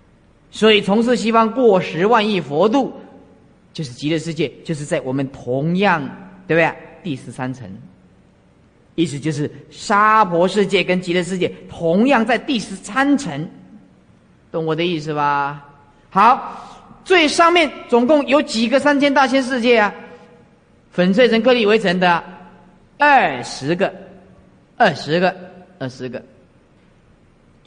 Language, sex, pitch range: Chinese, male, 170-270 Hz